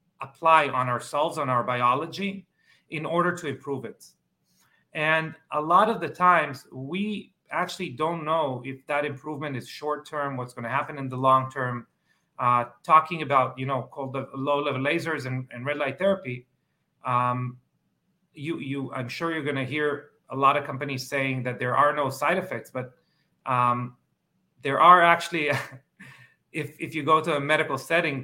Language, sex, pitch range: English, male, 130-160 Hz